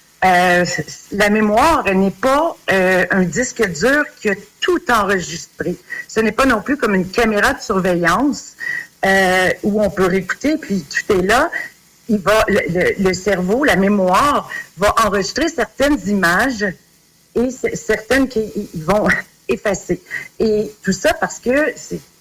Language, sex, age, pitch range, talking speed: French, female, 50-69, 170-220 Hz, 155 wpm